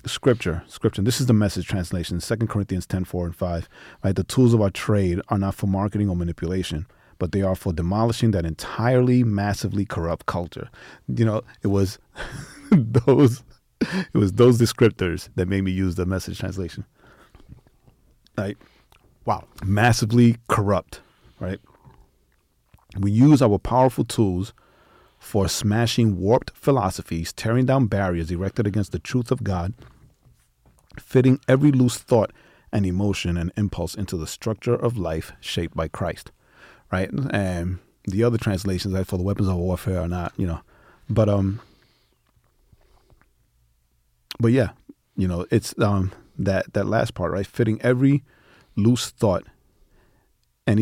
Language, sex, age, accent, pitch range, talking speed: English, male, 30-49, American, 90-115 Hz, 145 wpm